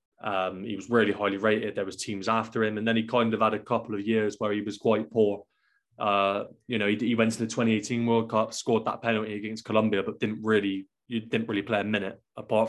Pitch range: 100-115 Hz